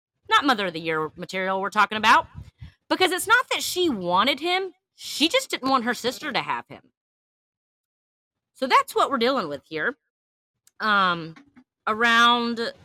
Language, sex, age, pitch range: English, female, 30-49, 195-325 Hz